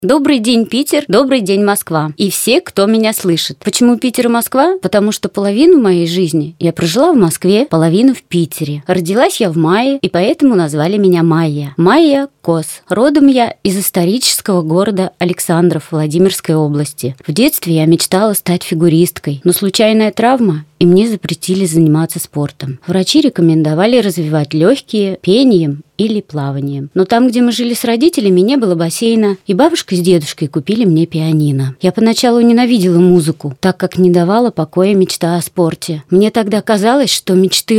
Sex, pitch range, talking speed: female, 170-220 Hz, 160 wpm